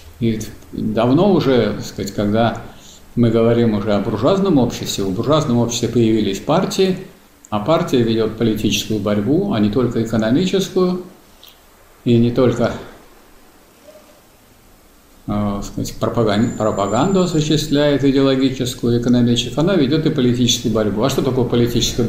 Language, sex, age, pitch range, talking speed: Russian, male, 50-69, 105-145 Hz, 115 wpm